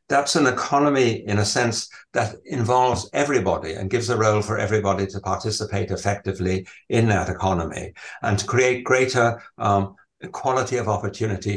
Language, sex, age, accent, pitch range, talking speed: English, male, 60-79, British, 100-115 Hz, 150 wpm